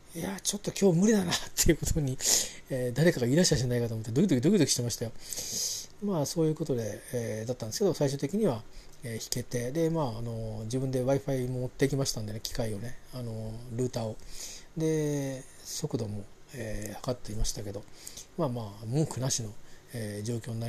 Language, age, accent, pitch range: Japanese, 40-59, native, 115-150 Hz